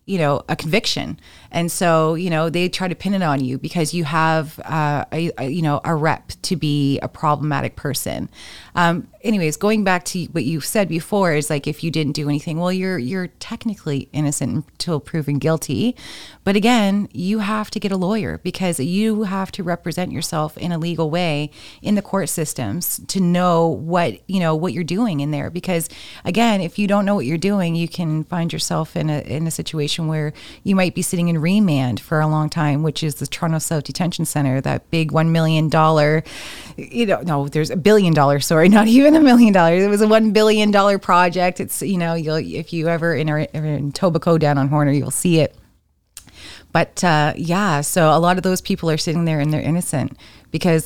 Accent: American